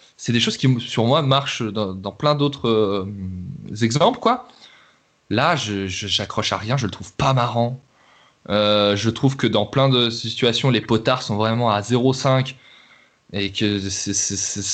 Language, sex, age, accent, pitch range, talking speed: French, male, 20-39, French, 105-125 Hz, 175 wpm